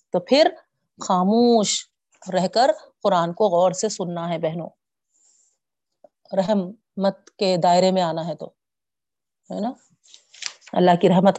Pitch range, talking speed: 175-220 Hz, 70 wpm